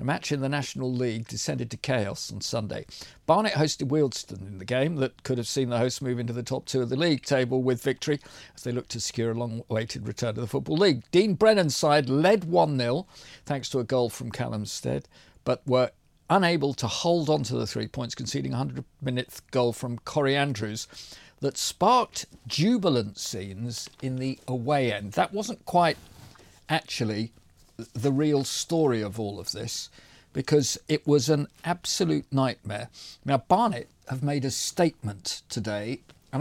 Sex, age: male, 50-69